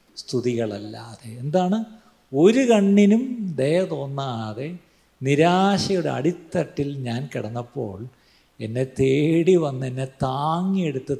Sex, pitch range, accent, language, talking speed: male, 125-190 Hz, native, Malayalam, 80 wpm